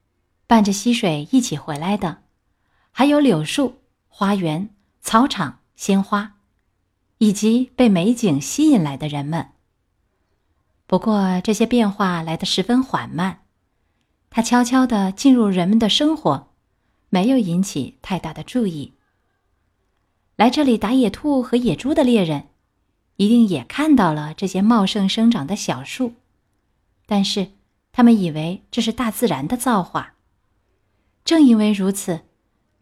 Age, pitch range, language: 30-49, 150-225 Hz, Chinese